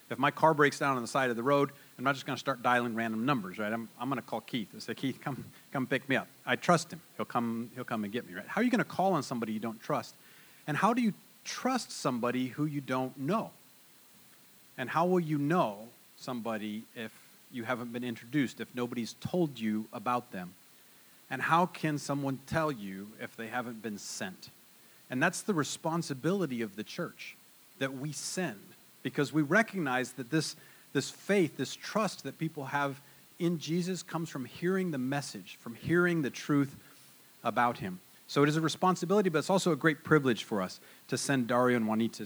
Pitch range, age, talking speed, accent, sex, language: 120-165 Hz, 40-59, 210 wpm, American, male, English